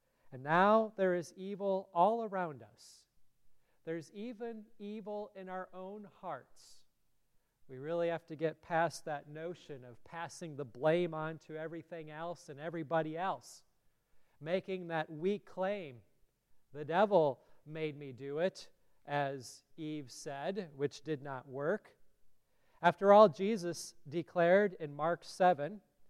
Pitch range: 145-185 Hz